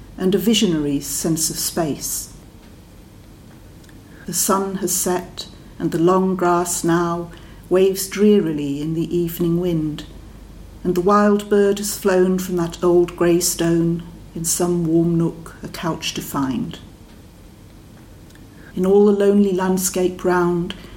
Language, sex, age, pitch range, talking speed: English, female, 50-69, 150-185 Hz, 130 wpm